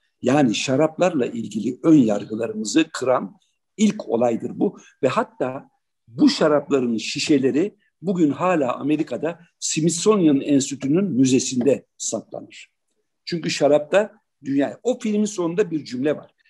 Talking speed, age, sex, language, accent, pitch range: 110 wpm, 60-79, male, Turkish, native, 140-205 Hz